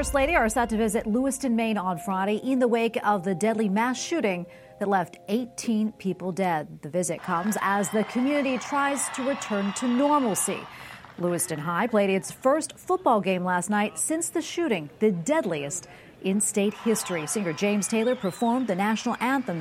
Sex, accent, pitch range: female, American, 180-240 Hz